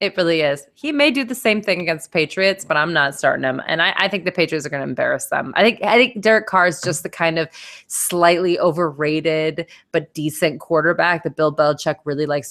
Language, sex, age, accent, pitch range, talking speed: English, female, 20-39, American, 160-230 Hz, 235 wpm